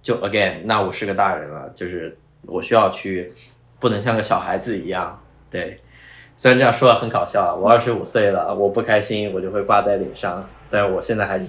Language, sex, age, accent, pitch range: Chinese, male, 20-39, native, 105-140 Hz